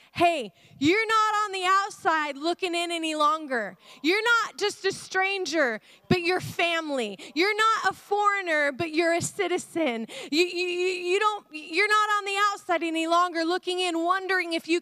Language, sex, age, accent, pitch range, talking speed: English, female, 30-49, American, 265-365 Hz, 170 wpm